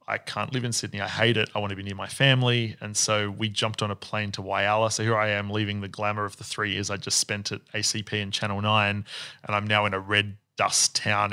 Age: 20-39